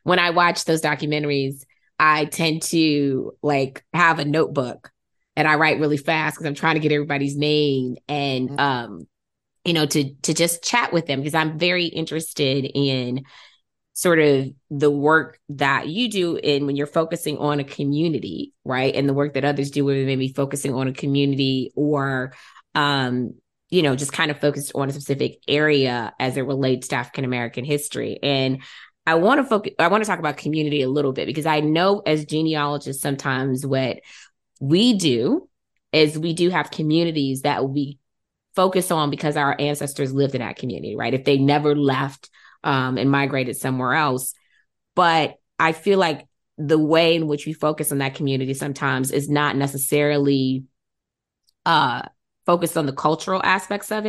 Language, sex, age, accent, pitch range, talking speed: English, female, 20-39, American, 135-160 Hz, 175 wpm